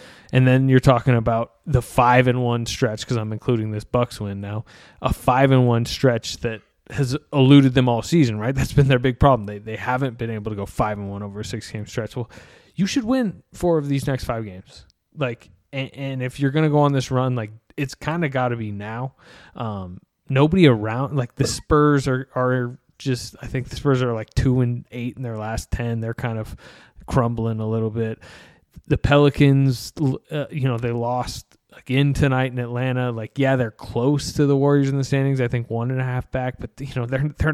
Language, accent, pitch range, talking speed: English, American, 115-140 Hz, 220 wpm